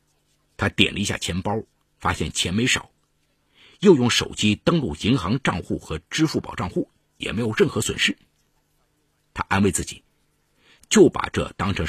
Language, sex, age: Chinese, male, 50-69